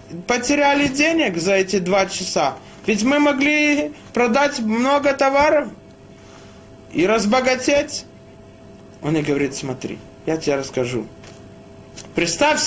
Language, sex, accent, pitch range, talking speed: Russian, male, native, 190-290 Hz, 105 wpm